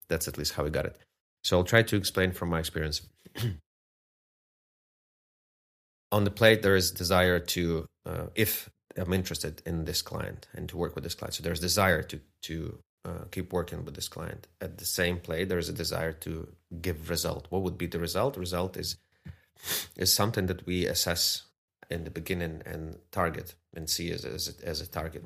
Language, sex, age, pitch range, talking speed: Russian, male, 30-49, 80-95 Hz, 190 wpm